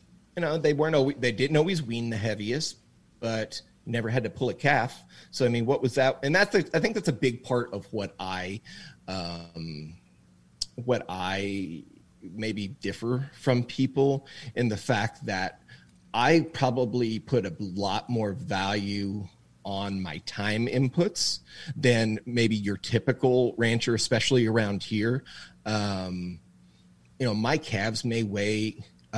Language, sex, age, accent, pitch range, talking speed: English, male, 30-49, American, 95-120 Hz, 145 wpm